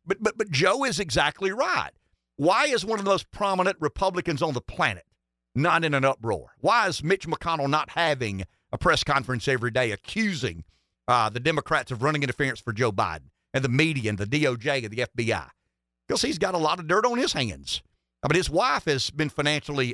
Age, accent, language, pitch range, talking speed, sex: 50-69, American, English, 110-170 Hz, 210 wpm, male